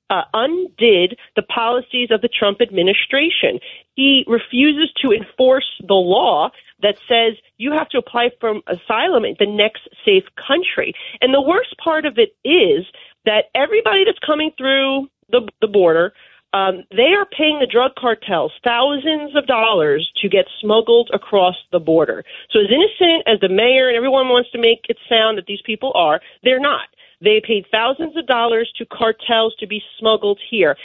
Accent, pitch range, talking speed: American, 210-305 Hz, 170 wpm